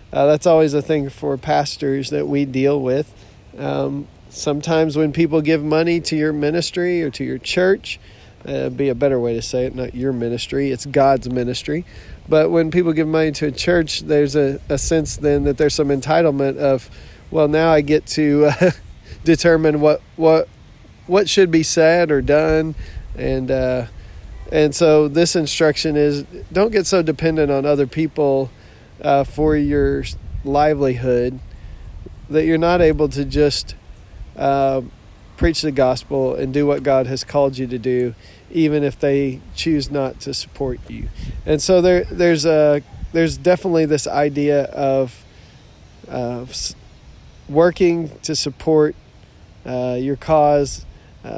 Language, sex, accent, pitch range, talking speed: English, male, American, 125-155 Hz, 155 wpm